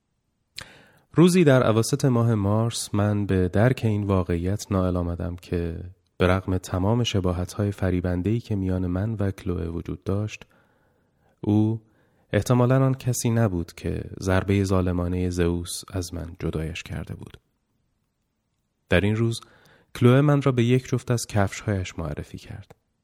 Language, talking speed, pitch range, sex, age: Persian, 135 wpm, 90-115 Hz, male, 30-49